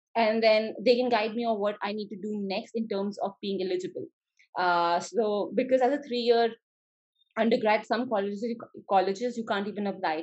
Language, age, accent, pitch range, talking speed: English, 20-39, Indian, 185-220 Hz, 195 wpm